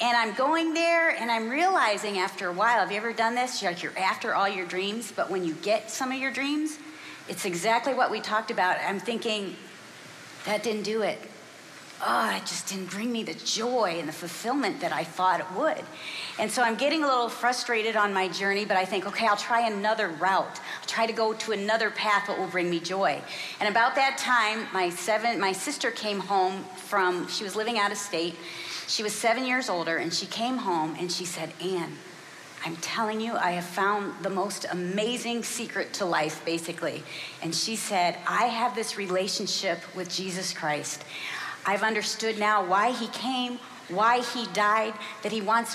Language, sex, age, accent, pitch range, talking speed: English, female, 40-59, American, 185-230 Hz, 200 wpm